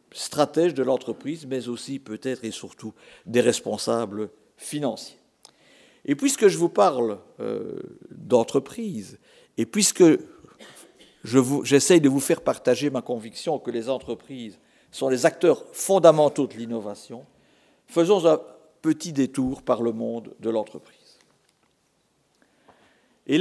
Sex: male